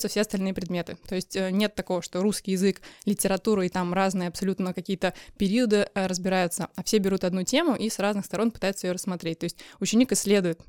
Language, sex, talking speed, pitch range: Russian, female, 190 wpm, 185-210 Hz